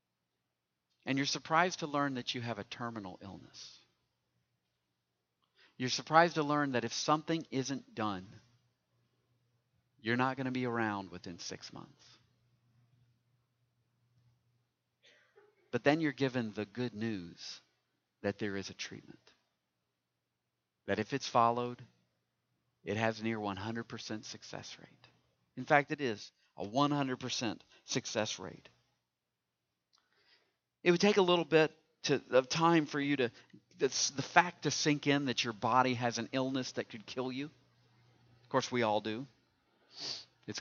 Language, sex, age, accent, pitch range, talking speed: English, male, 50-69, American, 110-150 Hz, 135 wpm